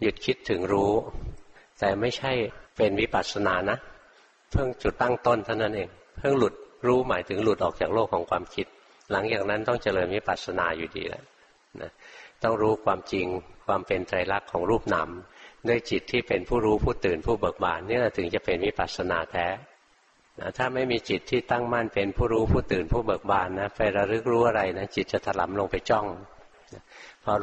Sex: male